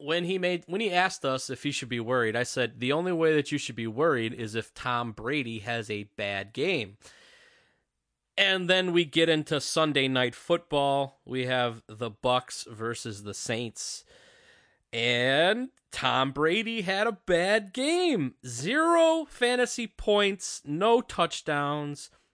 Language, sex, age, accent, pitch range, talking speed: English, male, 20-39, American, 125-185 Hz, 155 wpm